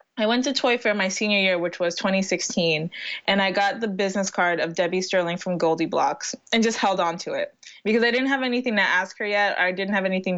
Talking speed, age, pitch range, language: 245 wpm, 20-39, 180-220 Hz, English